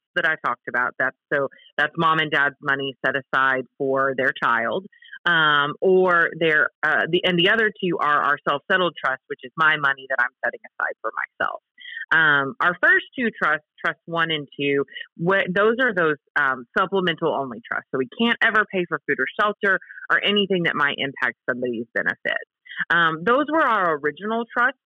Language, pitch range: English, 145-210 Hz